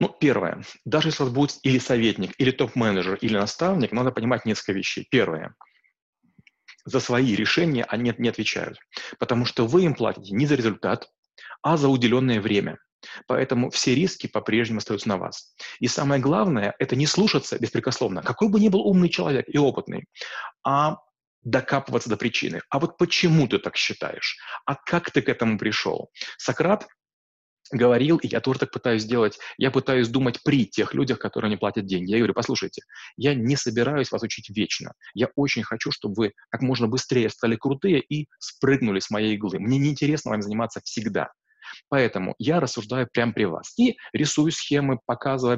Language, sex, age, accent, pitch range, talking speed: Russian, male, 30-49, native, 115-140 Hz, 170 wpm